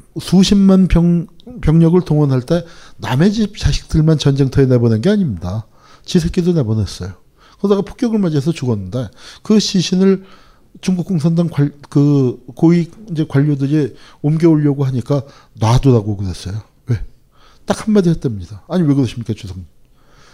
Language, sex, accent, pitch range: Korean, male, native, 115-165 Hz